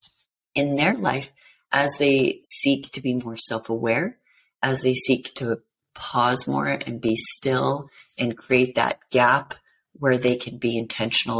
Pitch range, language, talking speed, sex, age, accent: 115-130 Hz, English, 145 wpm, female, 40-59, American